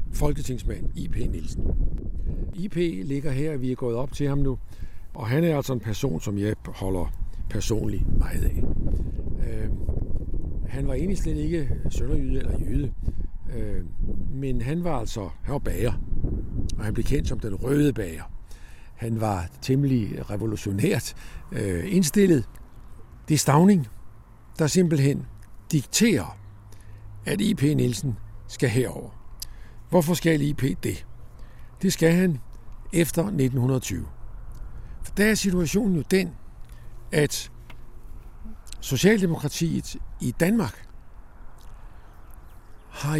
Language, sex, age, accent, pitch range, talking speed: Danish, male, 60-79, native, 95-150 Hz, 120 wpm